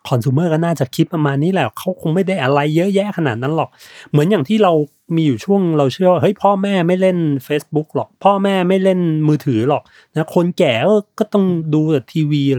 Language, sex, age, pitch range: Thai, male, 30-49, 120-165 Hz